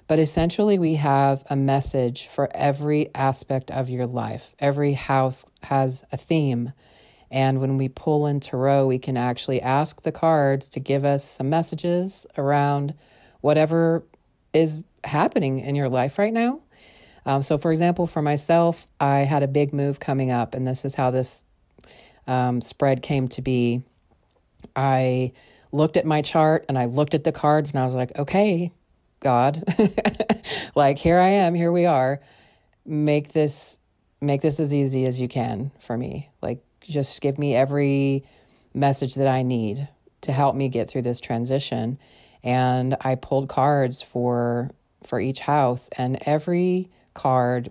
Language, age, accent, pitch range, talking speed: English, 40-59, American, 130-150 Hz, 160 wpm